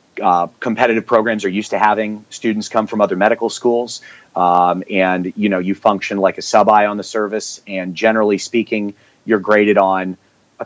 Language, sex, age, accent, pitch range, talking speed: English, male, 30-49, American, 95-110 Hz, 185 wpm